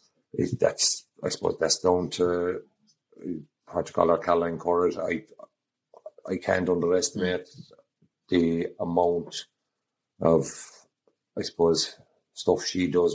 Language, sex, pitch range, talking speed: English, male, 80-85 Hz, 120 wpm